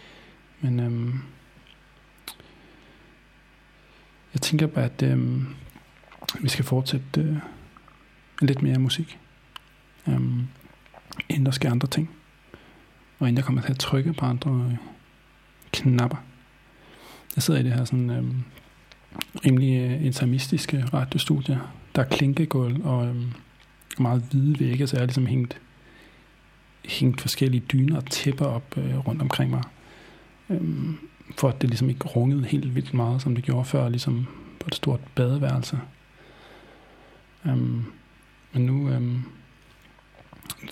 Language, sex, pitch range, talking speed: English, male, 125-140 Hz, 125 wpm